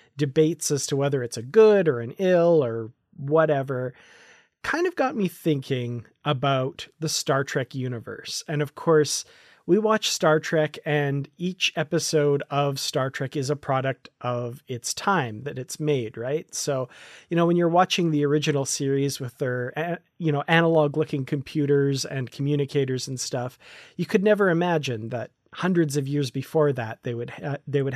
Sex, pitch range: male, 130-170 Hz